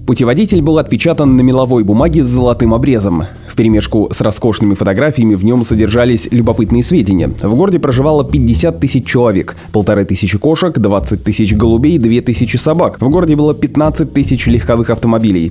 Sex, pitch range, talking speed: male, 105-135 Hz, 160 wpm